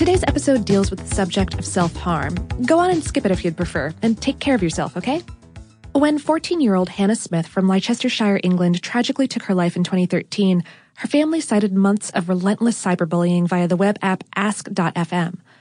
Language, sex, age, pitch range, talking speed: English, female, 20-39, 180-240 Hz, 180 wpm